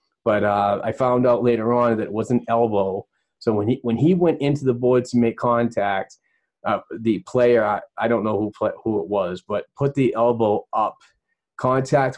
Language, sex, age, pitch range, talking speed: English, male, 30-49, 105-120 Hz, 205 wpm